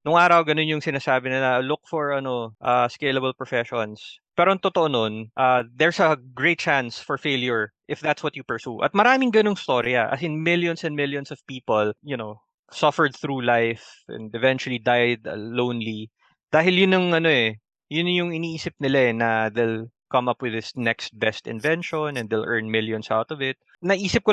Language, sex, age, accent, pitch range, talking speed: Filipino, male, 20-39, native, 120-155 Hz, 185 wpm